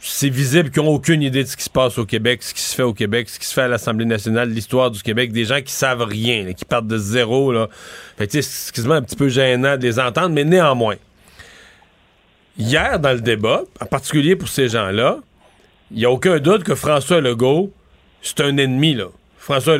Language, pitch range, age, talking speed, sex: French, 130-170 Hz, 40-59, 225 wpm, male